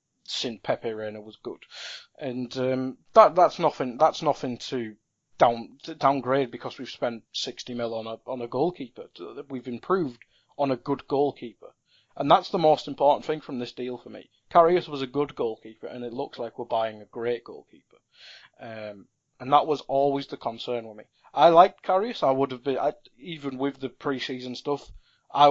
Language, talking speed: English, 190 wpm